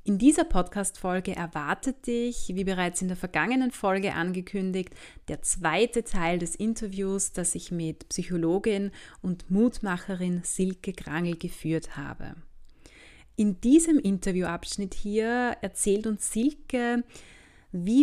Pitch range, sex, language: 180-235 Hz, female, German